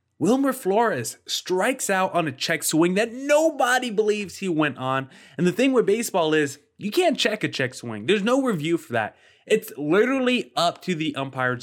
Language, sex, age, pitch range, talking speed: English, male, 20-39, 135-190 Hz, 190 wpm